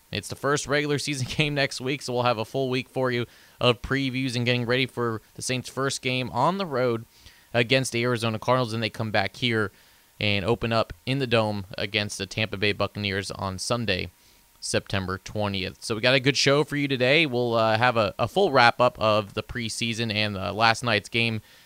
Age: 20-39